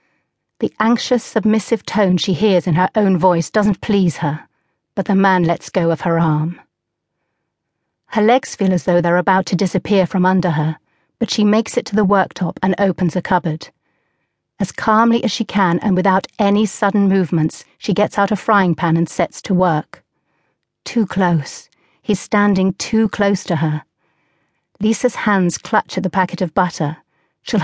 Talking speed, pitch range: 175 wpm, 175-210 Hz